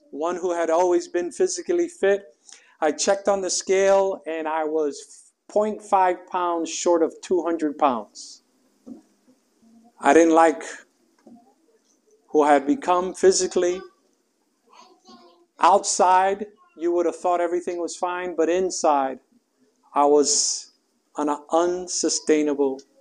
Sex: male